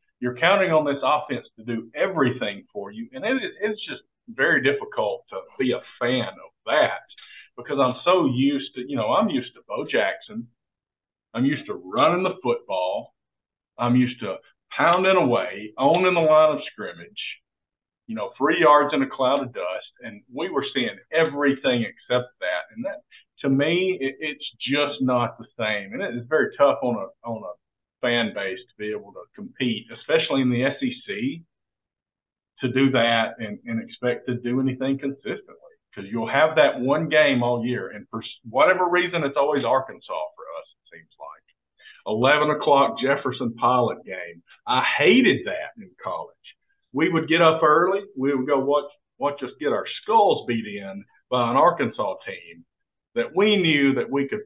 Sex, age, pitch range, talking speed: male, 50-69, 130-220 Hz, 180 wpm